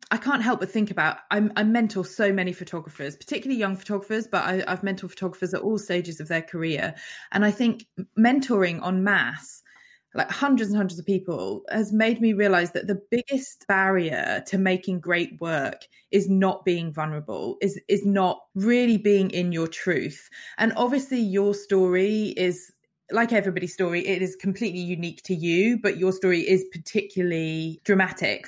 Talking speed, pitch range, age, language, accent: 170 wpm, 180-225 Hz, 20-39, English, British